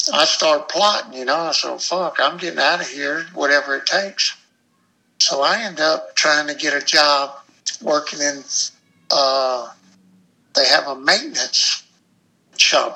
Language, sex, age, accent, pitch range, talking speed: English, male, 60-79, American, 130-150 Hz, 150 wpm